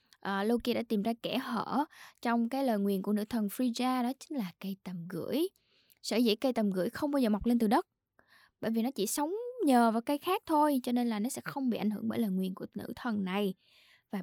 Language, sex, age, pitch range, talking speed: Vietnamese, female, 10-29, 200-260 Hz, 255 wpm